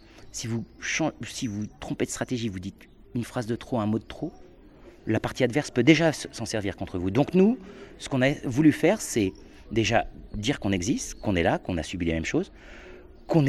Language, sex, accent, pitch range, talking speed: French, male, French, 100-150 Hz, 215 wpm